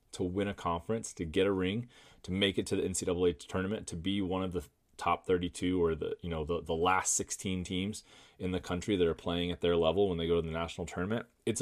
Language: English